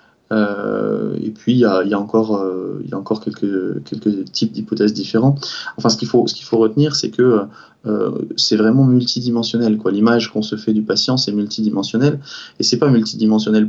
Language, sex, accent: French, male, French